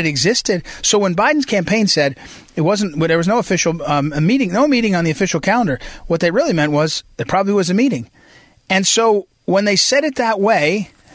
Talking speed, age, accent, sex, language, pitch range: 215 wpm, 40-59, American, male, English, 160-210 Hz